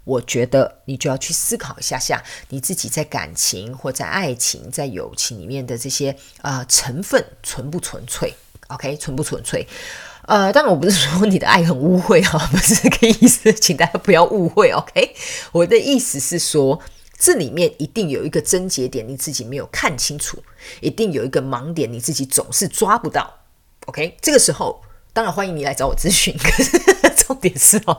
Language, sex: Chinese, female